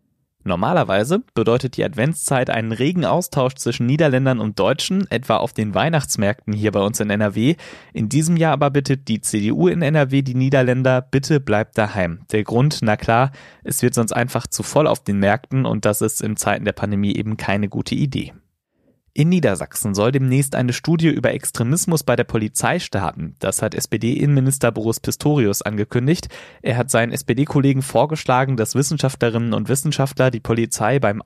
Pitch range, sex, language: 110-140 Hz, male, German